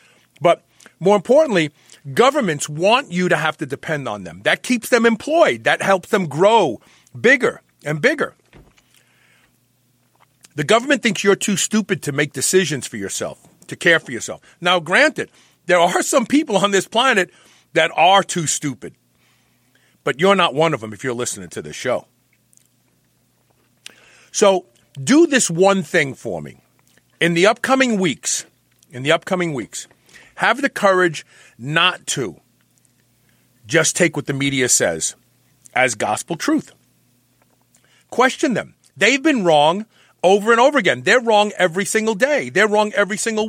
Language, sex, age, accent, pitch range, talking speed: English, male, 40-59, American, 155-235 Hz, 150 wpm